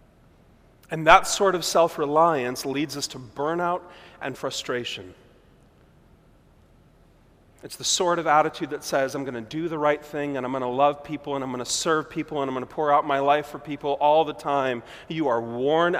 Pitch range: 130-165 Hz